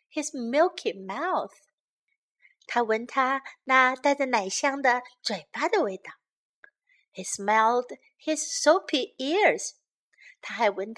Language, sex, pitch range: Chinese, female, 230-360 Hz